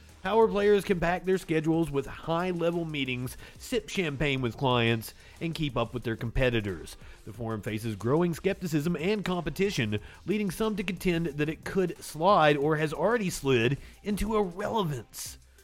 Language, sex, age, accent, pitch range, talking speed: English, male, 40-59, American, 120-180 Hz, 155 wpm